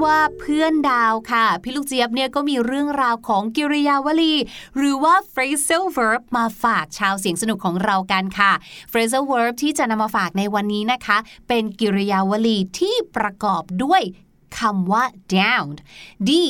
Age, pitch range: 20-39, 210-305 Hz